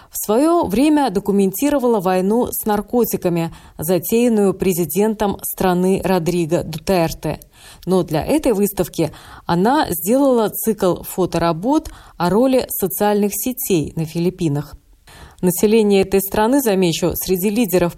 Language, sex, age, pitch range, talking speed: Russian, female, 20-39, 170-215 Hz, 105 wpm